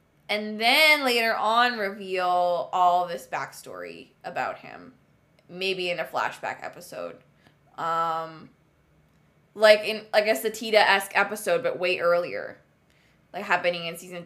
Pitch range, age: 170-205 Hz, 20-39